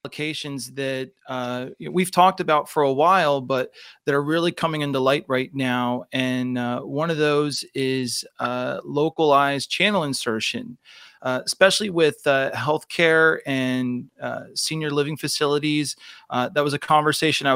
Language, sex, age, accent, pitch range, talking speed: English, male, 30-49, American, 135-155 Hz, 155 wpm